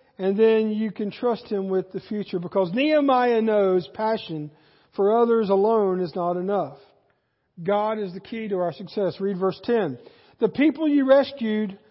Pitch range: 215-285 Hz